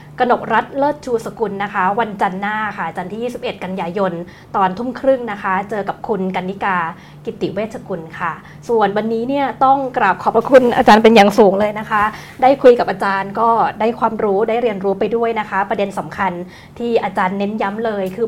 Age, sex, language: 20-39, female, Thai